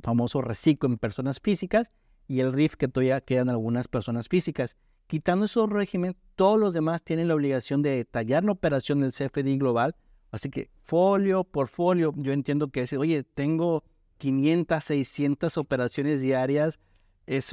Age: 50-69